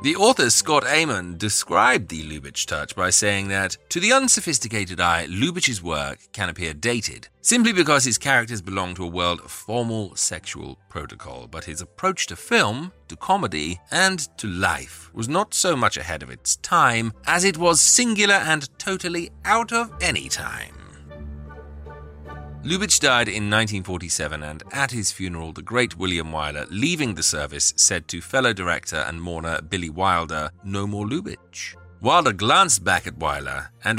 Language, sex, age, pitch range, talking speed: English, male, 30-49, 80-130 Hz, 160 wpm